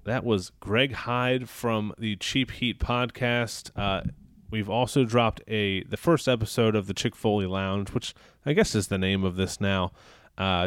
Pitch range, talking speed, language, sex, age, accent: 100-120 Hz, 180 wpm, English, male, 30-49, American